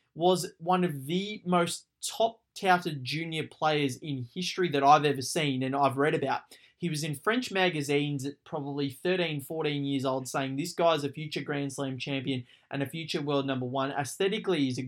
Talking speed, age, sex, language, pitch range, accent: 185 wpm, 20-39, male, English, 140-180 Hz, Australian